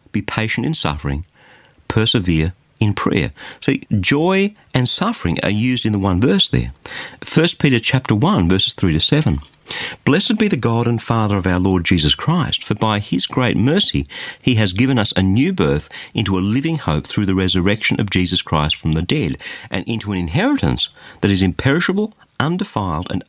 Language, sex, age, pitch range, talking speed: English, male, 50-69, 90-130 Hz, 190 wpm